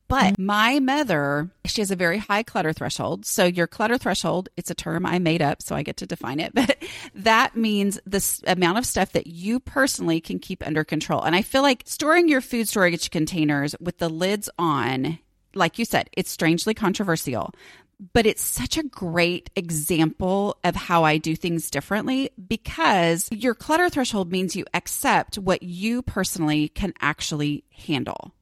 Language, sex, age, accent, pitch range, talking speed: English, female, 30-49, American, 165-220 Hz, 175 wpm